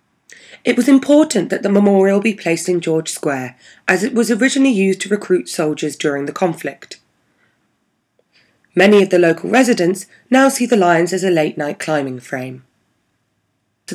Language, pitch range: English, 155-220 Hz